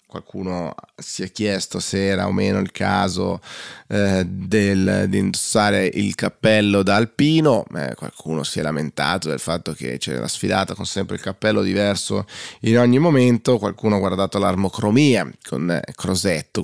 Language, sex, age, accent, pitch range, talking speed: Italian, male, 20-39, native, 95-115 Hz, 155 wpm